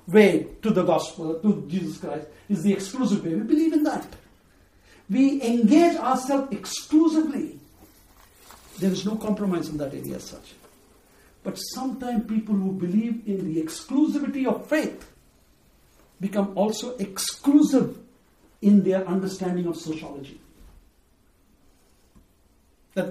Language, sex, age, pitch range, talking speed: English, male, 60-79, 175-245 Hz, 120 wpm